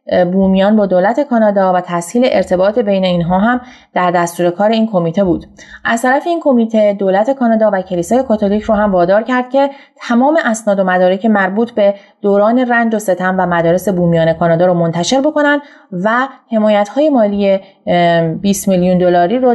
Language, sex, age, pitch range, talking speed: Persian, female, 30-49, 180-240 Hz, 170 wpm